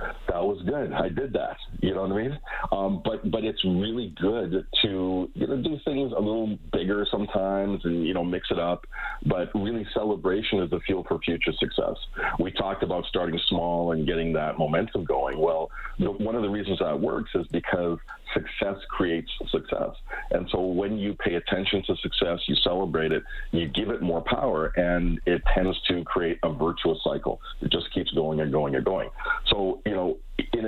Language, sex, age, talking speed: English, male, 40-59, 195 wpm